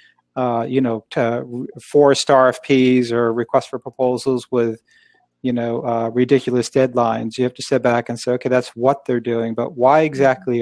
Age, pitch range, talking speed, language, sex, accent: 40-59, 120-140 Hz, 180 wpm, English, male, American